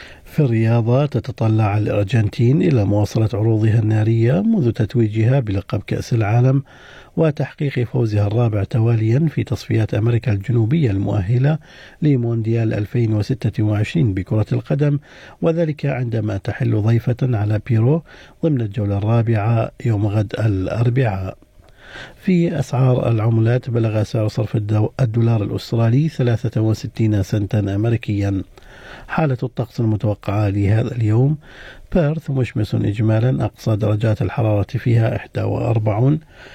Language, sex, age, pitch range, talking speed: Arabic, male, 50-69, 110-130 Hz, 100 wpm